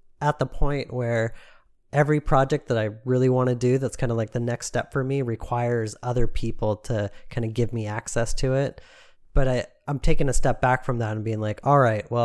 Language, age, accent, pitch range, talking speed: English, 30-49, American, 110-130 Hz, 230 wpm